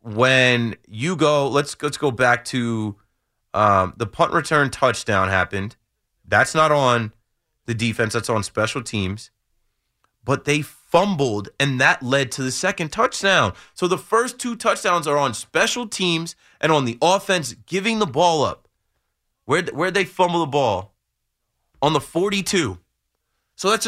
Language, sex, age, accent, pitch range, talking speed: English, male, 20-39, American, 120-185 Hz, 155 wpm